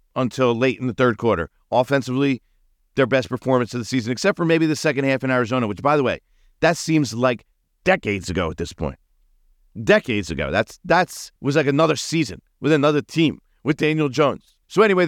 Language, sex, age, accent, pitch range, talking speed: English, male, 50-69, American, 95-140 Hz, 195 wpm